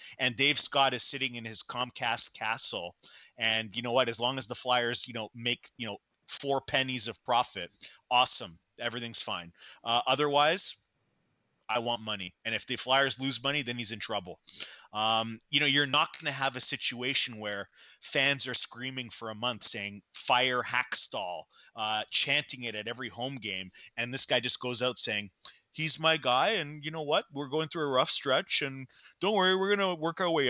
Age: 30-49